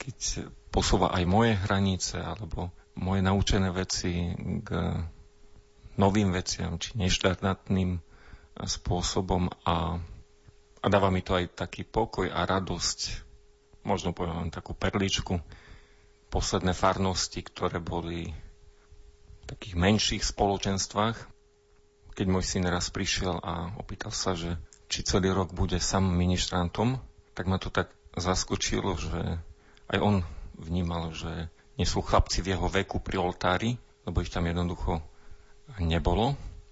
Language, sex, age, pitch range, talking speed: Slovak, male, 40-59, 85-100 Hz, 125 wpm